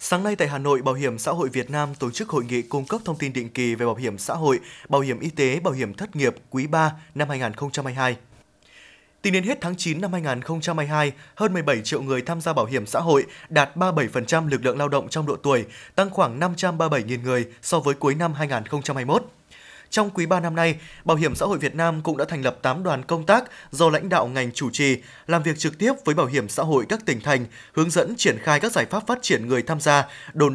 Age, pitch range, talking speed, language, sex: 20-39, 135-170 Hz, 240 wpm, Vietnamese, male